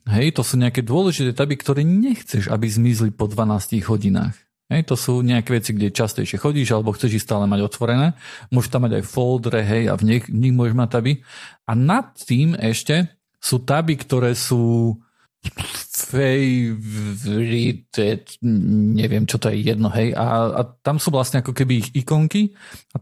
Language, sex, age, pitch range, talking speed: Slovak, male, 40-59, 120-145 Hz, 170 wpm